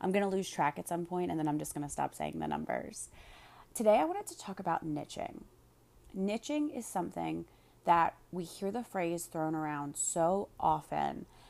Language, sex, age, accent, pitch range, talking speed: English, female, 30-49, American, 165-210 Hz, 195 wpm